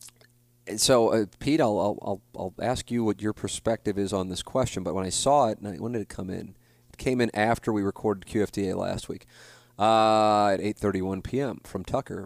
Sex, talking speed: male, 195 wpm